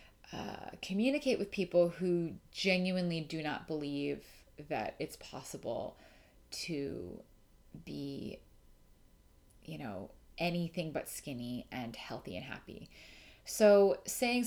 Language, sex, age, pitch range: English, female, 30-49, 155-195 Hz